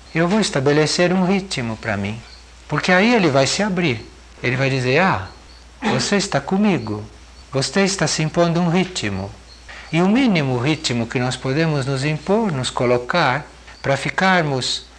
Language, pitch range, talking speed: Portuguese, 120-175 Hz, 155 wpm